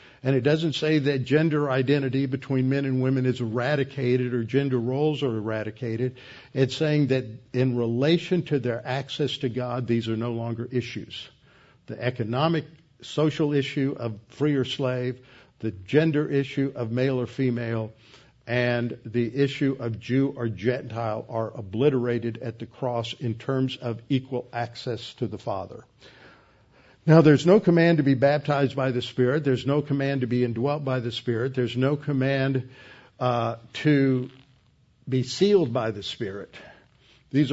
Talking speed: 155 wpm